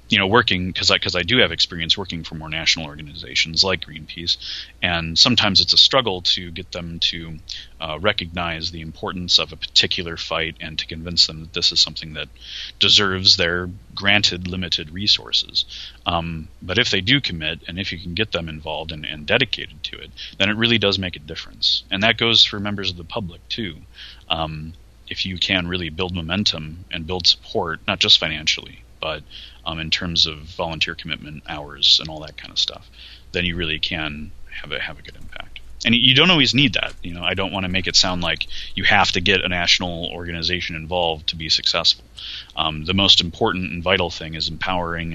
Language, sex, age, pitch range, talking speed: English, male, 30-49, 80-95 Hz, 205 wpm